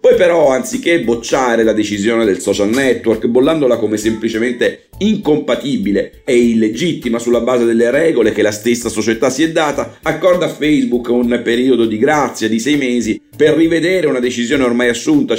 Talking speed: 165 wpm